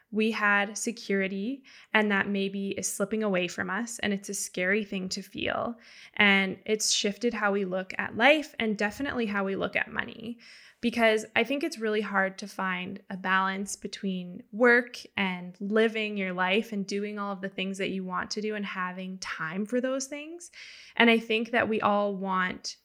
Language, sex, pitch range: English, female, 195-230 Hz